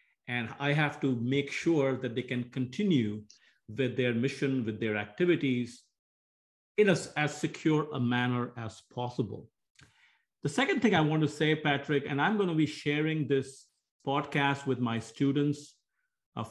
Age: 50-69